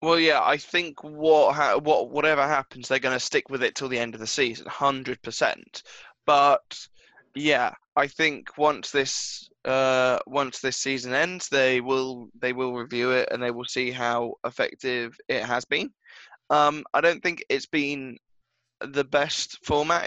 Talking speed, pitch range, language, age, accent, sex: 170 wpm, 125-145 Hz, English, 10-29, British, male